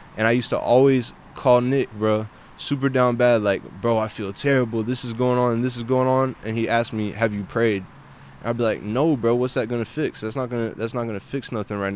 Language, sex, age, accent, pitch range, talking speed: English, male, 10-29, American, 110-125 Hz, 255 wpm